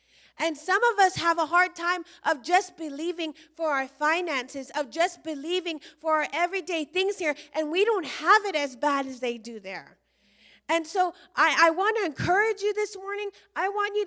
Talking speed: 195 wpm